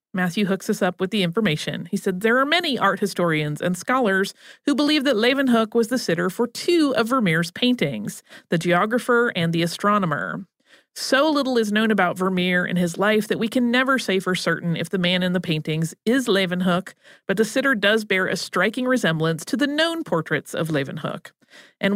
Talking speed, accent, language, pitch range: 195 wpm, American, English, 180-240 Hz